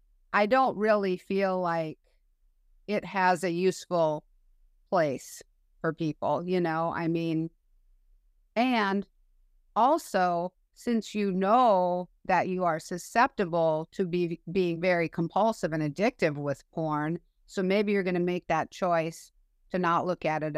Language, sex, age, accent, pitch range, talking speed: English, female, 50-69, American, 180-240 Hz, 135 wpm